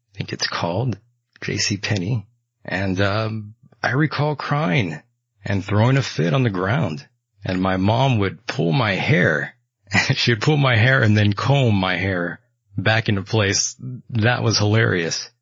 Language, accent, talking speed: English, American, 150 wpm